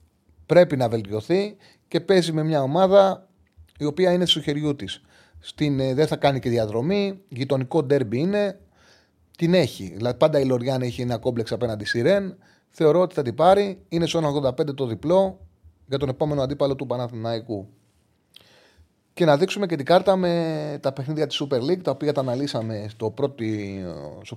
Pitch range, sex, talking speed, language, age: 110-150 Hz, male, 165 wpm, Greek, 30-49